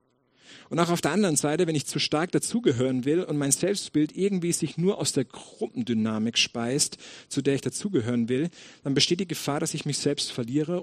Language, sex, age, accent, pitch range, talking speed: English, male, 50-69, German, 125-160 Hz, 200 wpm